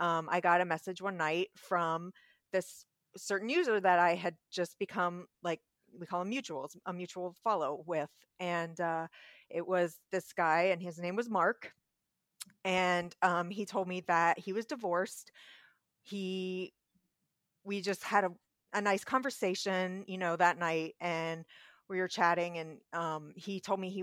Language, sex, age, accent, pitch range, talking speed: English, female, 30-49, American, 175-210 Hz, 165 wpm